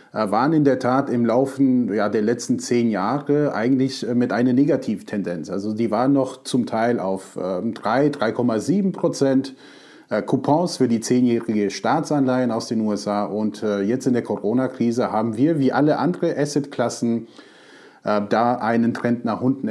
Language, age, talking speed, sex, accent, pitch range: German, 30-49, 160 wpm, male, German, 115-145 Hz